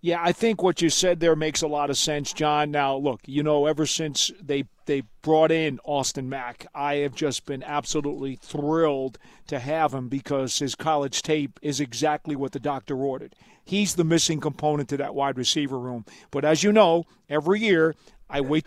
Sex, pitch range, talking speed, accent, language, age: male, 145-180 Hz, 195 wpm, American, English, 40-59